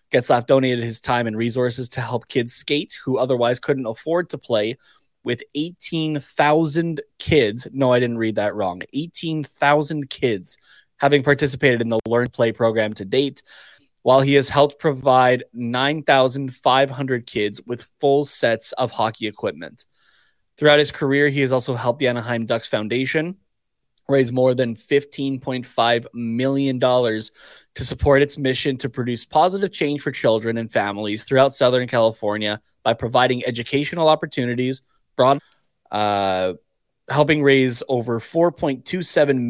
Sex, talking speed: male, 135 wpm